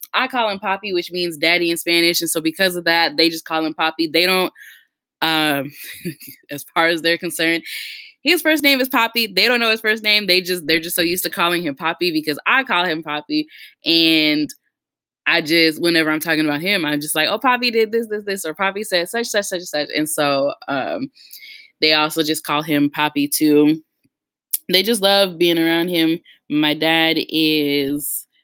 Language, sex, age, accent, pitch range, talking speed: English, female, 10-29, American, 155-195 Hz, 205 wpm